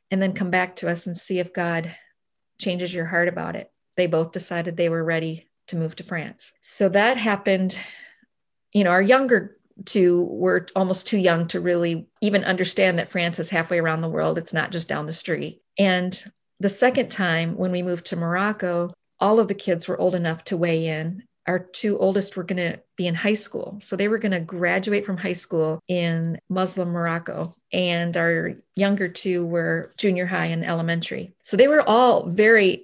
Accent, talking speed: American, 200 wpm